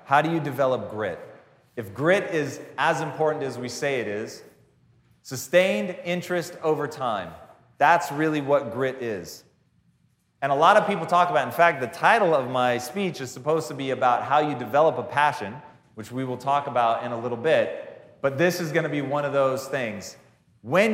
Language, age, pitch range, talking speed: English, 30-49, 135-175 Hz, 190 wpm